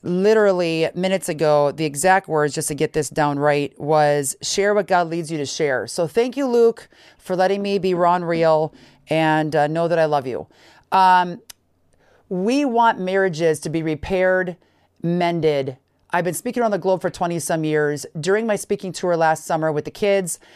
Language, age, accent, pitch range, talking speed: English, 40-59, American, 160-195 Hz, 185 wpm